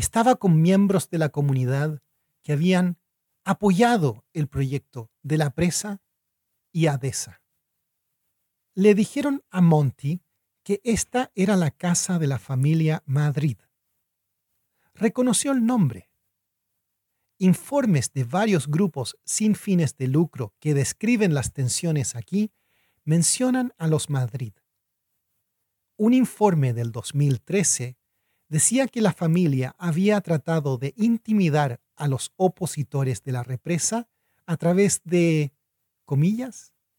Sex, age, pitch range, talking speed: male, 40-59, 120-185 Hz, 115 wpm